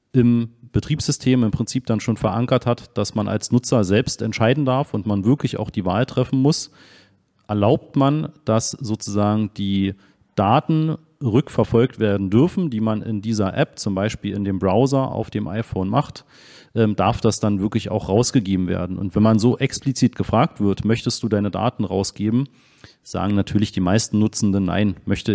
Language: German